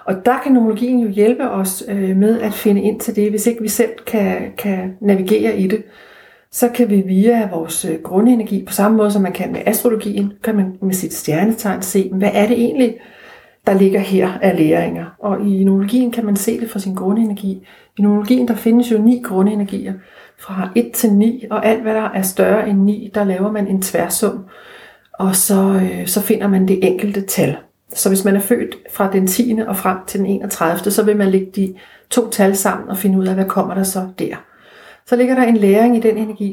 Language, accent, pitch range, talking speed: Danish, native, 190-225 Hz, 215 wpm